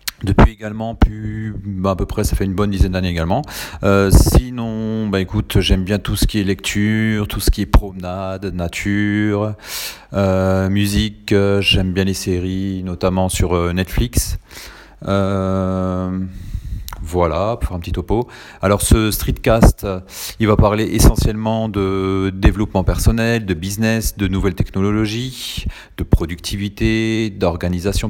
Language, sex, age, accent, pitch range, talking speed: French, male, 40-59, French, 90-105 Hz, 130 wpm